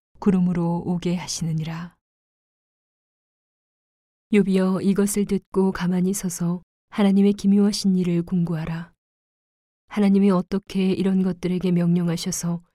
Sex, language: female, Korean